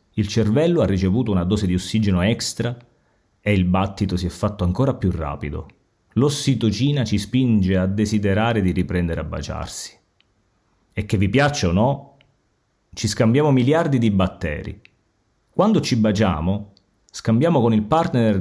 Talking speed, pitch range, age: 145 wpm, 90-115 Hz, 30-49